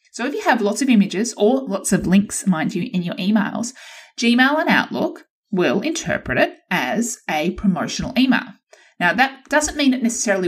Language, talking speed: English, 185 wpm